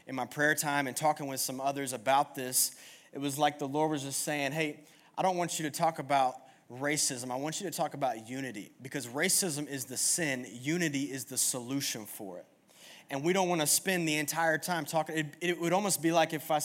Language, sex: English, male